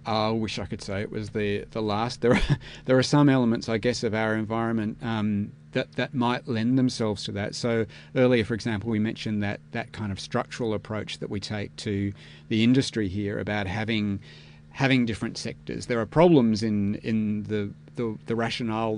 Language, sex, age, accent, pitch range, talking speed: English, male, 40-59, Australian, 100-120 Hz, 195 wpm